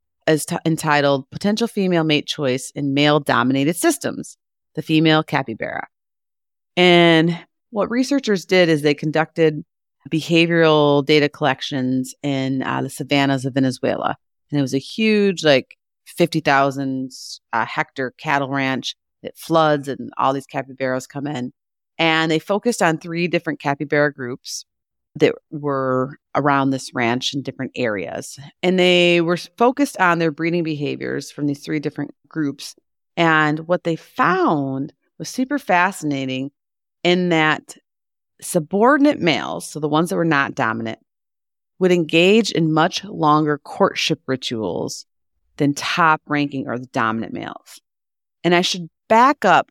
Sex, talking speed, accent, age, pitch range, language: female, 140 wpm, American, 30-49, 140-170 Hz, English